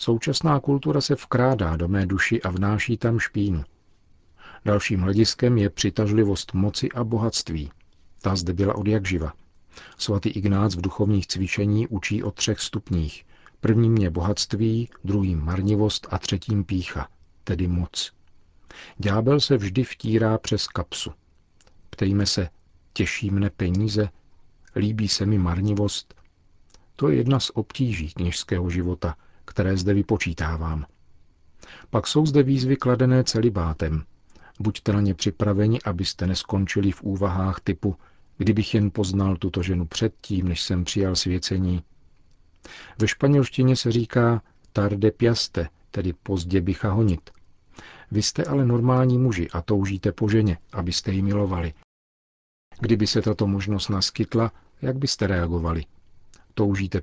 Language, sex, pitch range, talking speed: Czech, male, 90-110 Hz, 130 wpm